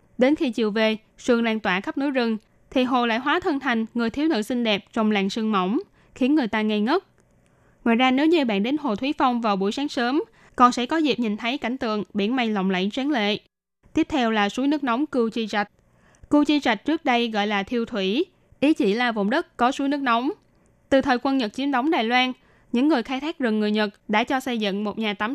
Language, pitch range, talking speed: Vietnamese, 215-270 Hz, 250 wpm